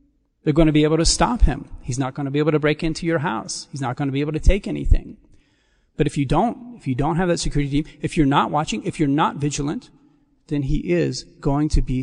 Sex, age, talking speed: male, 40-59, 265 wpm